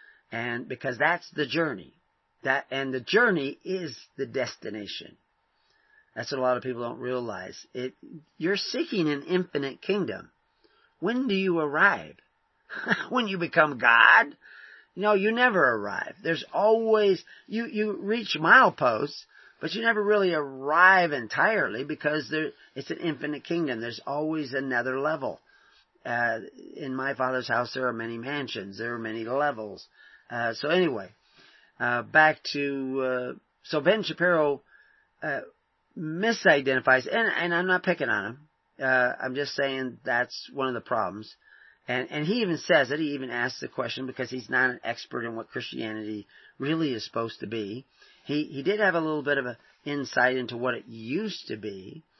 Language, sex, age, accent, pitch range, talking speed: English, male, 40-59, American, 125-175 Hz, 160 wpm